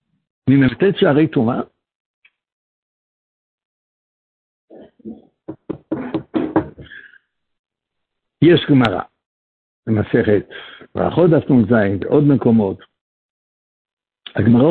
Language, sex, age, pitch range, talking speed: Hebrew, male, 60-79, 105-145 Hz, 55 wpm